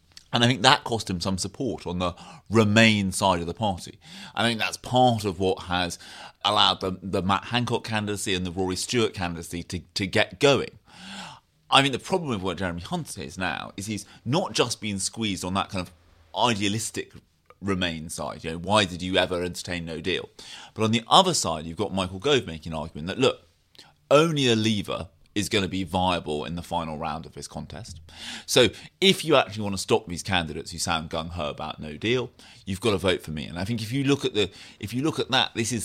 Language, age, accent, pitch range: English, 30-49, British, 85-110 Hz